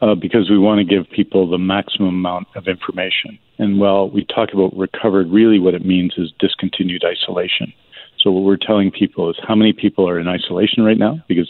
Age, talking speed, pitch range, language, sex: 50-69, 210 wpm, 90-105 Hz, English, male